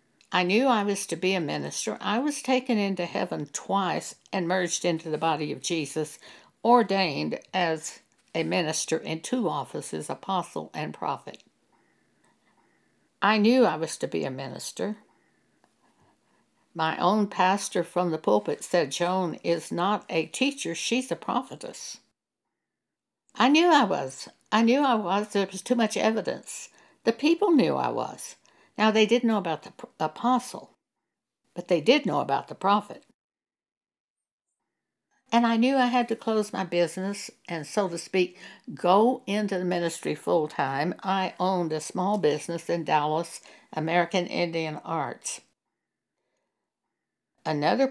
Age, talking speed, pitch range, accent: 60-79, 145 wpm, 170-230 Hz, American